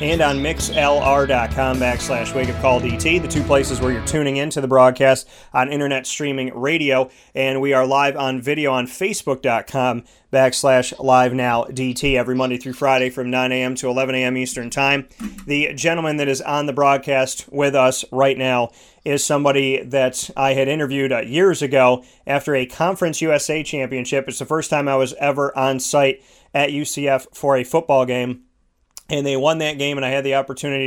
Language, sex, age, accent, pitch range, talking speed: English, male, 30-49, American, 130-145 Hz, 185 wpm